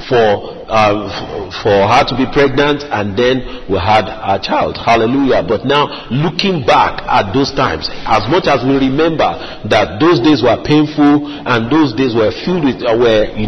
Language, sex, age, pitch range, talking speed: English, male, 40-59, 115-150 Hz, 185 wpm